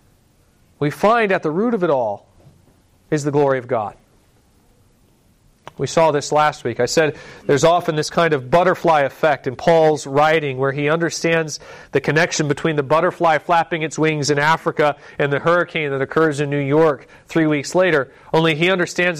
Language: English